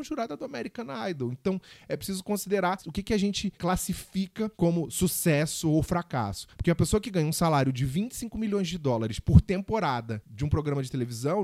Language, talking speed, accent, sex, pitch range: Portuguese, 195 wpm, Brazilian, male, 130-185 Hz